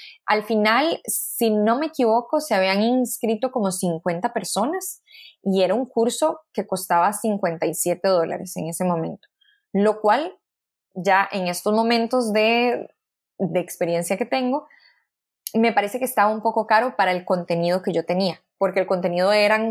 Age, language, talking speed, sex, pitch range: 20-39, Spanish, 155 wpm, female, 185-230 Hz